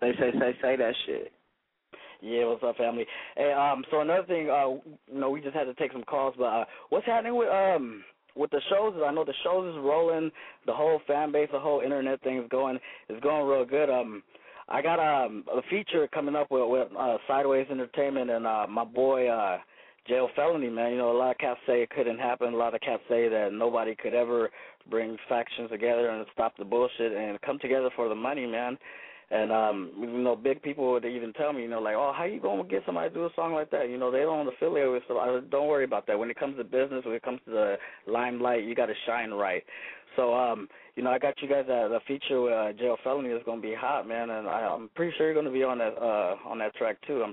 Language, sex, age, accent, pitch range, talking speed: English, male, 20-39, American, 115-140 Hz, 250 wpm